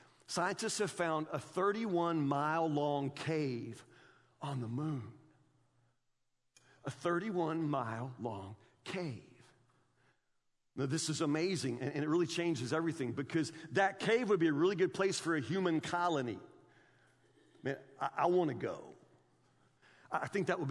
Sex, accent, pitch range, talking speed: male, American, 155-210 Hz, 135 wpm